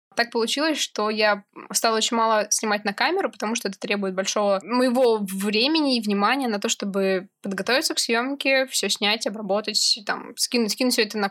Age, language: 20-39, Russian